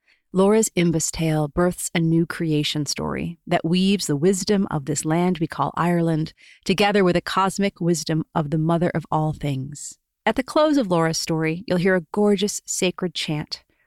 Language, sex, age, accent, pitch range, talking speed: English, female, 30-49, American, 160-205 Hz, 175 wpm